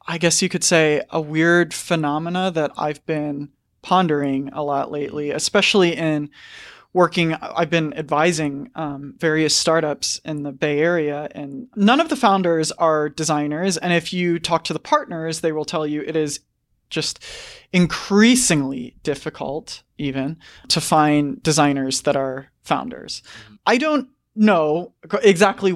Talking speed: 145 wpm